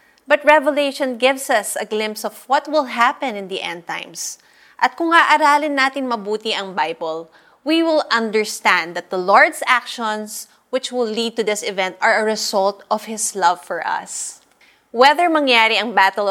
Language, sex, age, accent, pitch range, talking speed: Filipino, female, 20-39, native, 195-270 Hz, 170 wpm